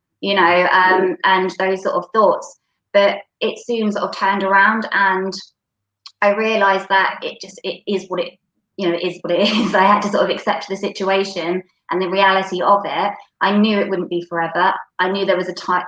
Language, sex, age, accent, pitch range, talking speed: English, female, 20-39, British, 175-200 Hz, 210 wpm